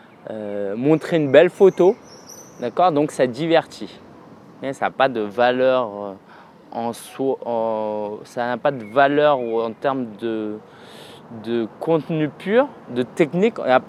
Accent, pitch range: French, 120-185 Hz